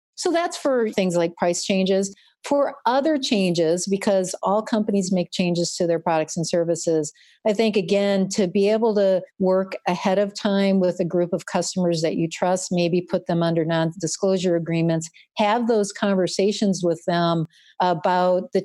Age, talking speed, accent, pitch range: 50-69, 165 wpm, American, 165-195 Hz